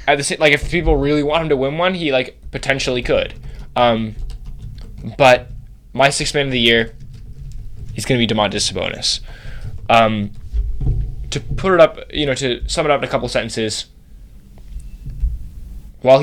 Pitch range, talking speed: 110-140 Hz, 170 wpm